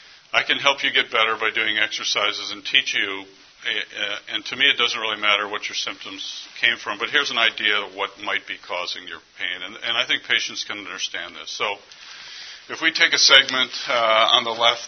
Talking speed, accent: 205 wpm, American